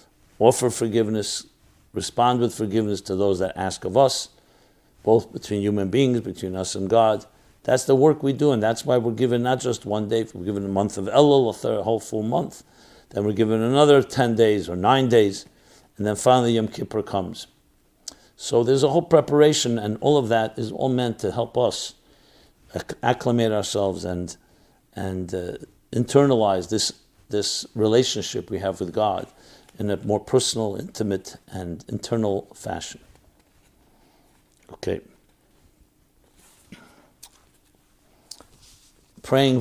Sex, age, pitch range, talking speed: male, 60-79, 100-130 Hz, 145 wpm